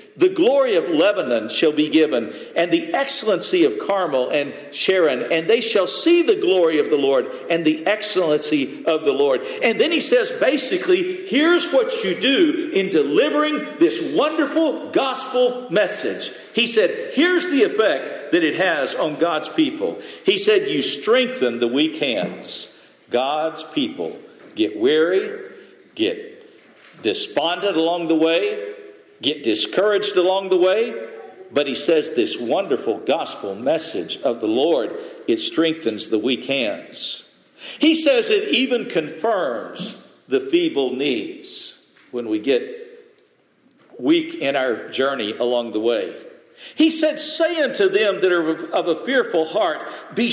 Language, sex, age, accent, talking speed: English, male, 50-69, American, 145 wpm